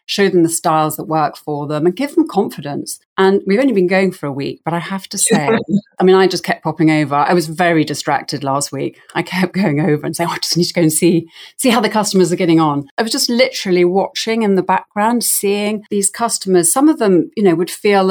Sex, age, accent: female, 40-59, British